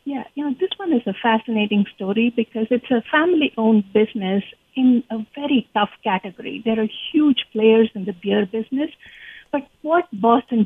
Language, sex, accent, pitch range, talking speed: English, female, Indian, 215-270 Hz, 170 wpm